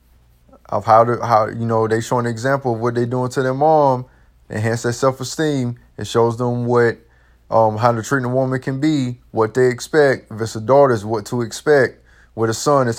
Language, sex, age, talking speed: English, male, 20-39, 210 wpm